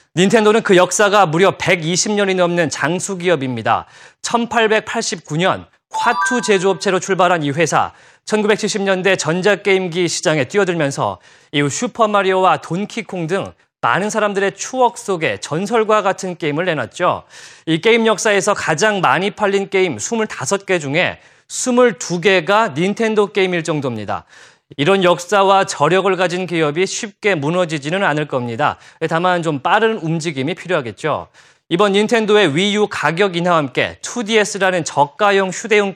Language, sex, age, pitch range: Korean, male, 30-49, 165-210 Hz